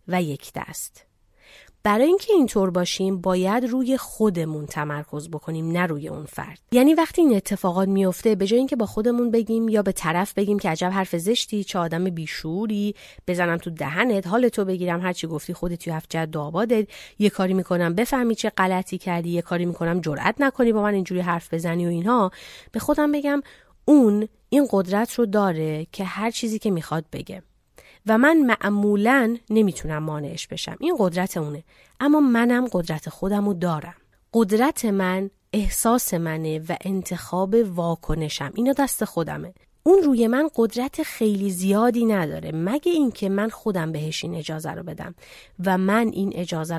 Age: 30-49